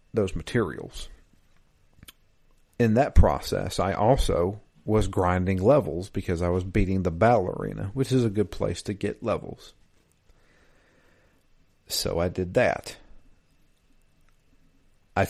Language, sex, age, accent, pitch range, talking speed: English, male, 50-69, American, 90-105 Hz, 120 wpm